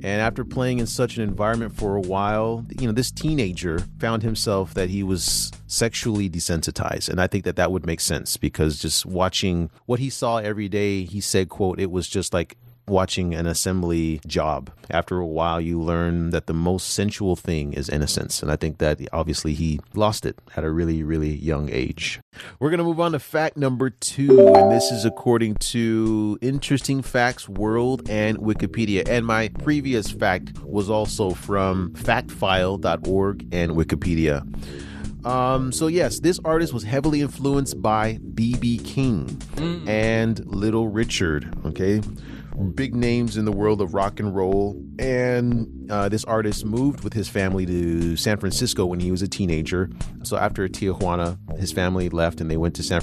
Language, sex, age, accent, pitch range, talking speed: English, male, 30-49, American, 85-115 Hz, 175 wpm